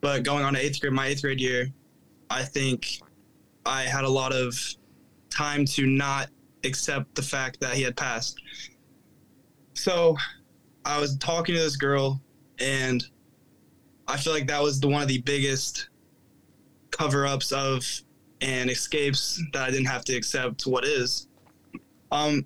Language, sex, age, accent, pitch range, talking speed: English, male, 20-39, American, 135-150 Hz, 160 wpm